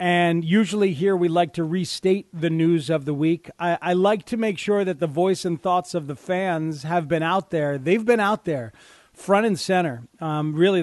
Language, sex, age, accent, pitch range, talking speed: English, male, 30-49, American, 160-190 Hz, 215 wpm